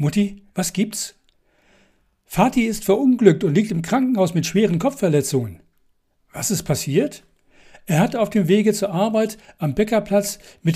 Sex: male